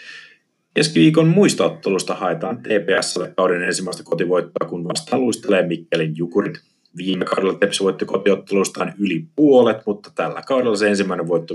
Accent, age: native, 30-49